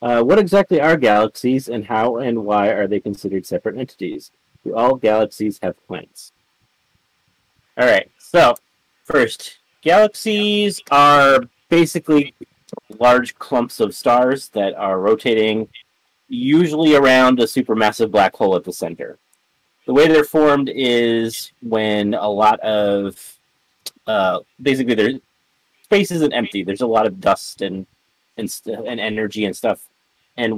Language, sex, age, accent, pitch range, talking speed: English, male, 30-49, American, 105-130 Hz, 135 wpm